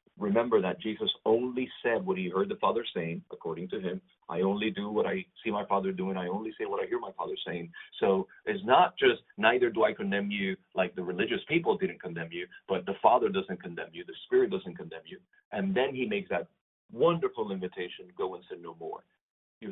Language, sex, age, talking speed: English, male, 40-59, 220 wpm